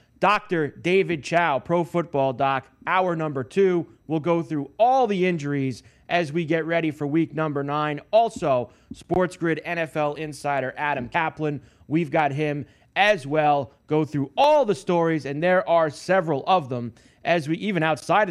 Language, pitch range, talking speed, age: English, 145-190 Hz, 160 wpm, 30-49